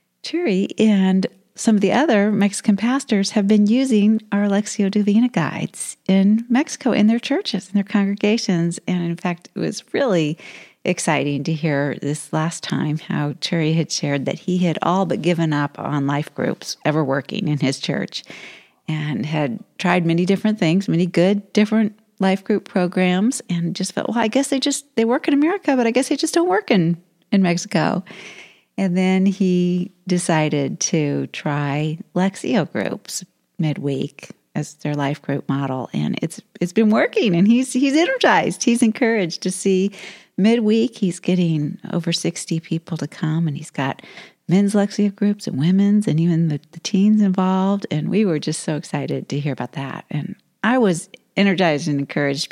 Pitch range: 160-210 Hz